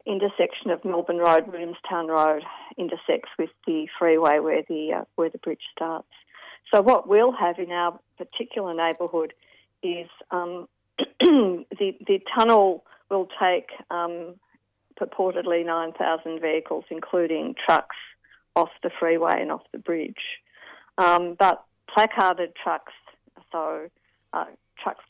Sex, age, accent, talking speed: female, 50-69, Australian, 125 wpm